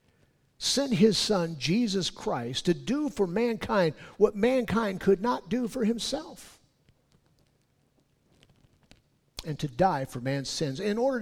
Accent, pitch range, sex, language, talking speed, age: American, 145-225 Hz, male, English, 130 wpm, 50-69